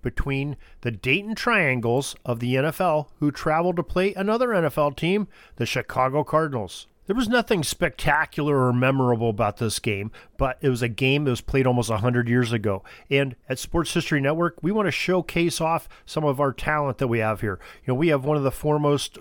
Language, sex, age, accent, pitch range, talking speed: English, male, 40-59, American, 125-165 Hz, 205 wpm